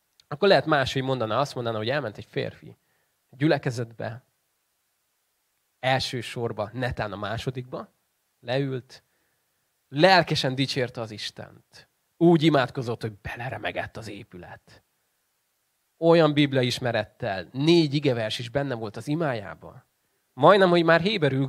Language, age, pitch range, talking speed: Hungarian, 20-39, 115-145 Hz, 115 wpm